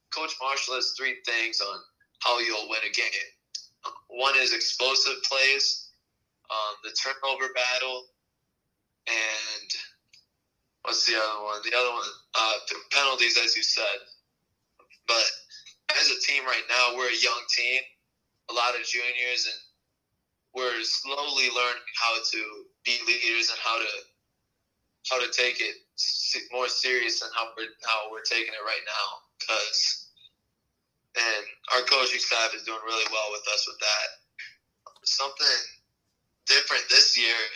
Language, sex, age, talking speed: English, male, 20-39, 140 wpm